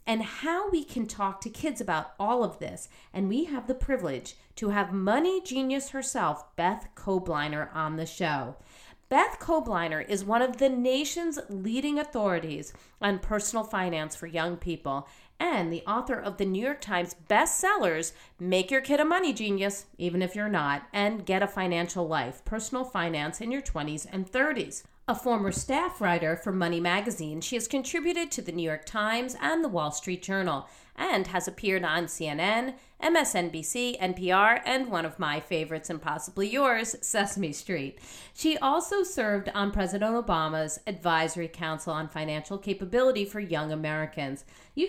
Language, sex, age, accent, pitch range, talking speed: English, female, 40-59, American, 170-250 Hz, 165 wpm